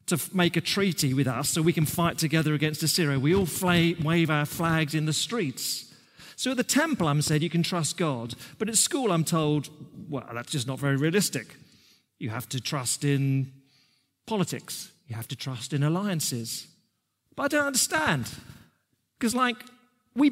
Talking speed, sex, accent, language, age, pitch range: 180 wpm, male, British, English, 40-59, 140-205 Hz